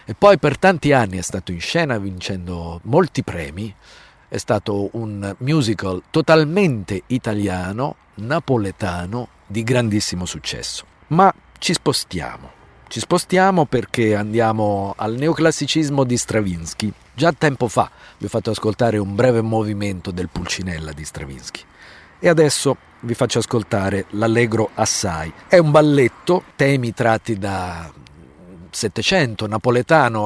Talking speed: 125 wpm